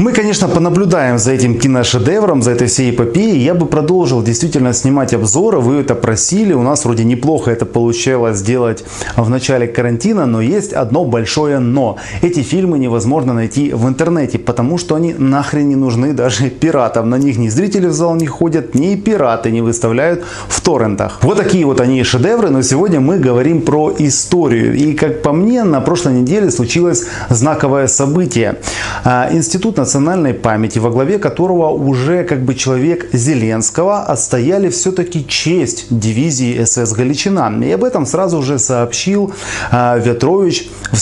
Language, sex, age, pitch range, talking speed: Russian, male, 20-39, 120-170 Hz, 160 wpm